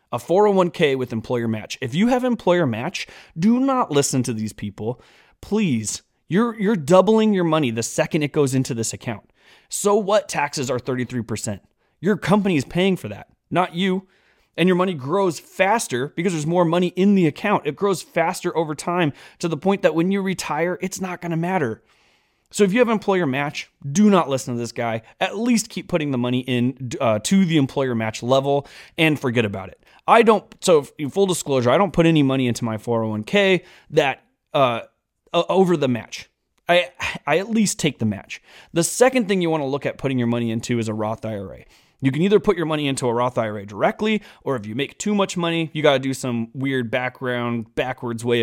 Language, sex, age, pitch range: English, male, 20-39, 120-185 Hz